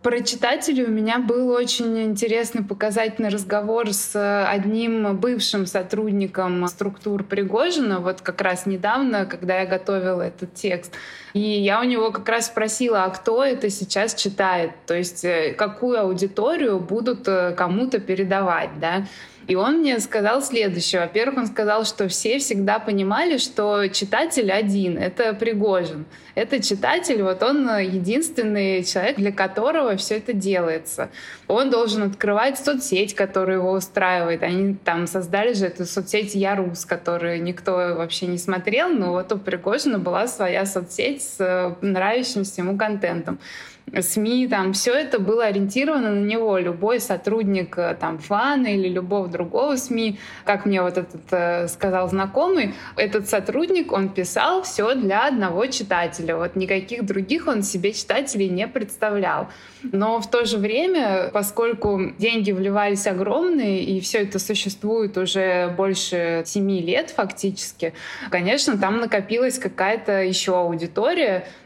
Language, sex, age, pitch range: Russian, female, 20-39, 185-225 Hz